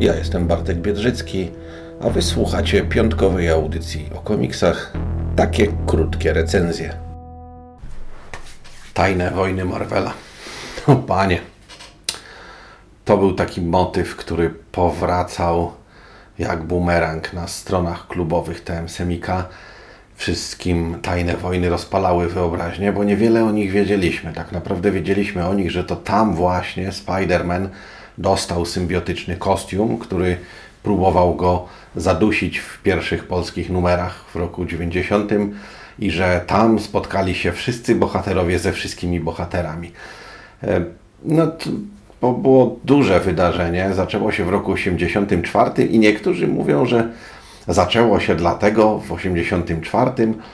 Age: 50-69